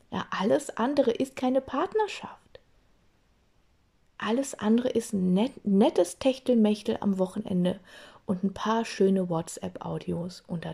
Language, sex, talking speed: German, female, 105 wpm